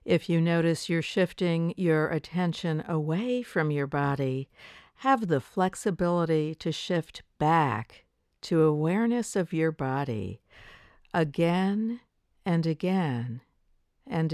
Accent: American